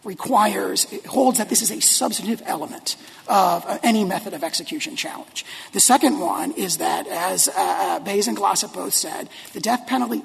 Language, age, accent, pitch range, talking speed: English, 40-59, American, 230-305 Hz, 170 wpm